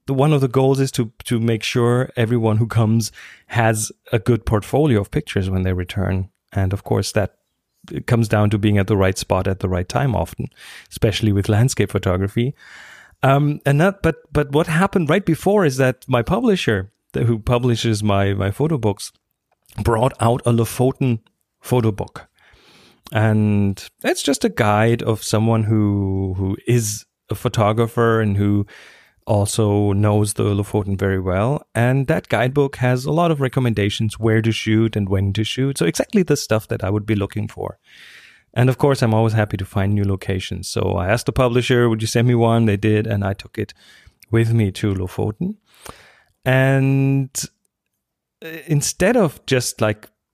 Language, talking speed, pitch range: English, 180 wpm, 105-130 Hz